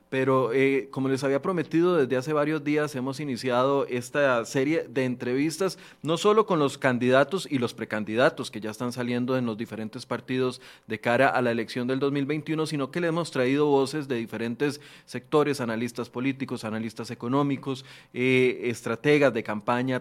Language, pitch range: Spanish, 120-140 Hz